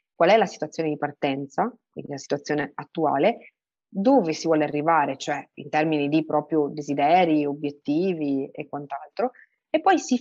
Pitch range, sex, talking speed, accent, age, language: 150-195 Hz, female, 155 wpm, native, 30-49, Italian